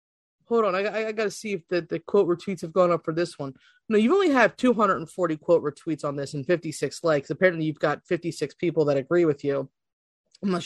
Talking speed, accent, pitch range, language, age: 230 wpm, American, 160-255 Hz, English, 30-49